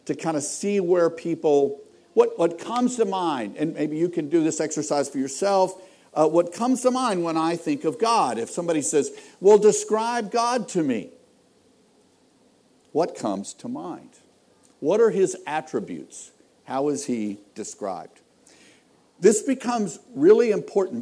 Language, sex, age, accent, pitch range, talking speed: English, male, 50-69, American, 150-250 Hz, 155 wpm